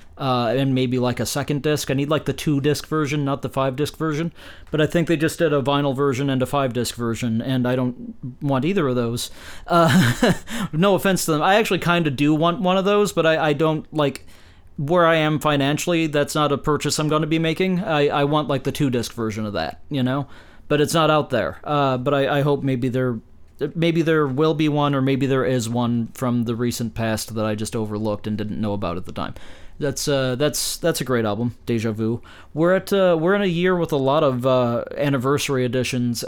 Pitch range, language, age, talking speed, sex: 120-150 Hz, English, 40-59, 230 wpm, male